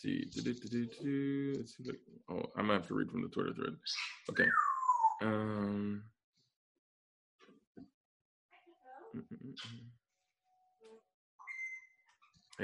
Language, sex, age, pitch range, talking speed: English, male, 20-39, 105-160 Hz, 70 wpm